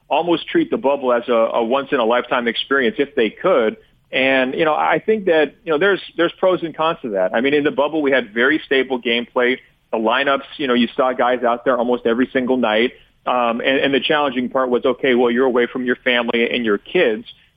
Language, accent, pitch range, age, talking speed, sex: English, American, 120-135 Hz, 40-59, 230 wpm, male